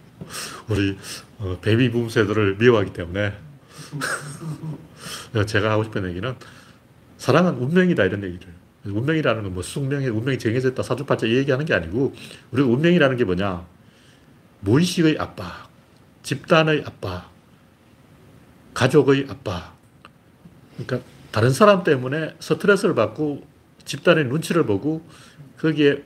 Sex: male